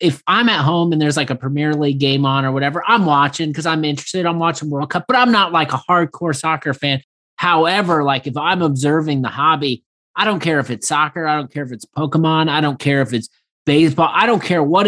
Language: English